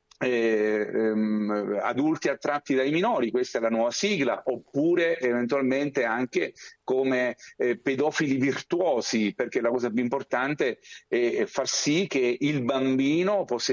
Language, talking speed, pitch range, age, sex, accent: Italian, 120 wpm, 120-145 Hz, 50-69, male, native